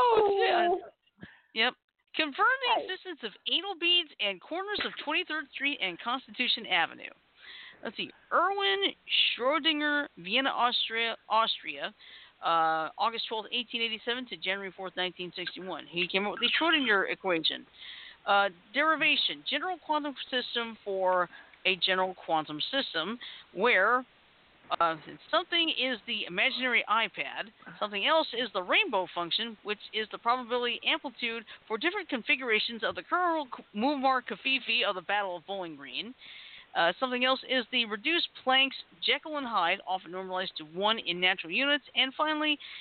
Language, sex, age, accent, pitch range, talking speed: English, female, 50-69, American, 195-290 Hz, 135 wpm